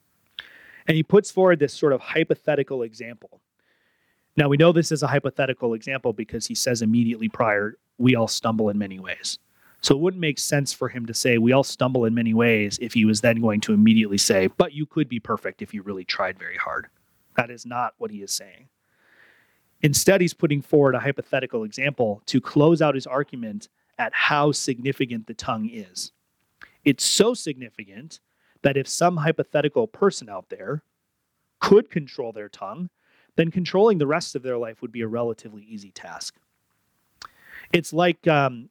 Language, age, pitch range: English, 30-49, 115-160 Hz